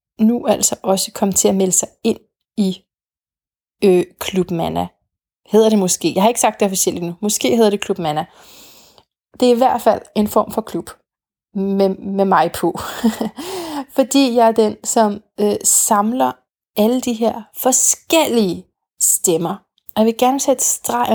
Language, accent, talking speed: Danish, native, 160 wpm